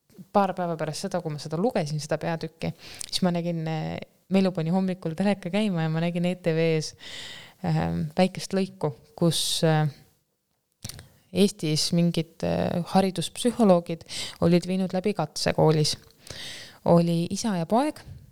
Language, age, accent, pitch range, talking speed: English, 20-39, Finnish, 155-185 Hz, 115 wpm